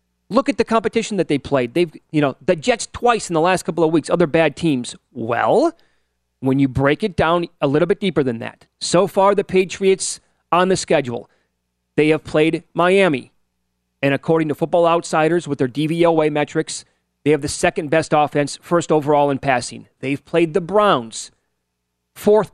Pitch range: 125-180 Hz